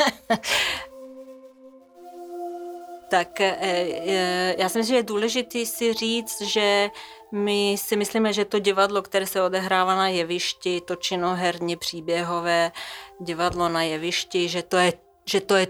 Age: 30-49